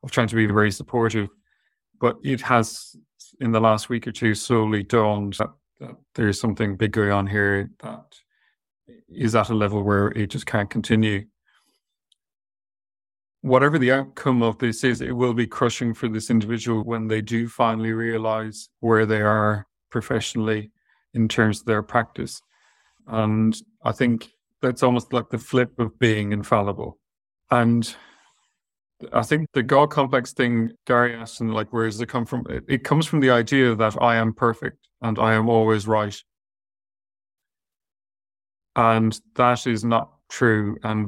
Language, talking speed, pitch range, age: English, 160 wpm, 110-120 Hz, 40-59